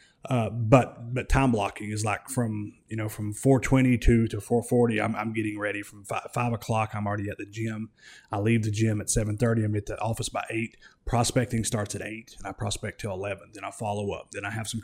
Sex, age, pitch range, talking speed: male, 30-49, 105-120 Hz, 225 wpm